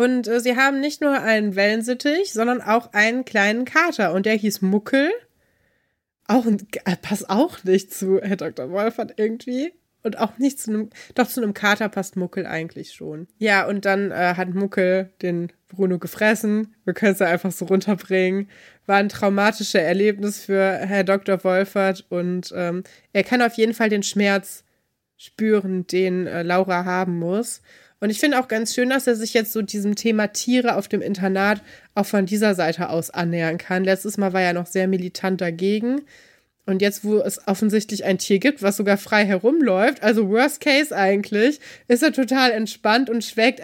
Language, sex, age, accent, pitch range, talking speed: German, female, 20-39, German, 190-225 Hz, 185 wpm